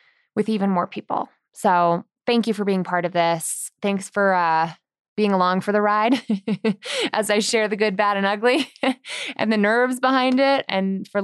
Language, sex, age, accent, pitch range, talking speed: English, female, 20-39, American, 195-260 Hz, 185 wpm